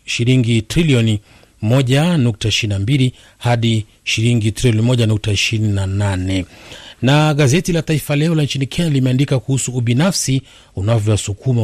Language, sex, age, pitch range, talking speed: Swahili, male, 40-59, 105-135 Hz, 90 wpm